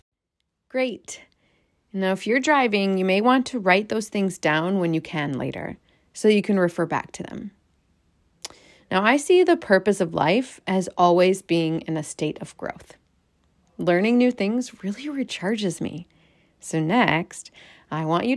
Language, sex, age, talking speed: English, female, 30-49, 165 wpm